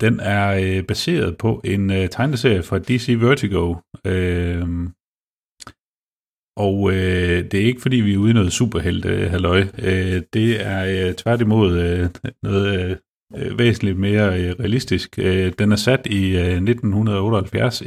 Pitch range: 90-105 Hz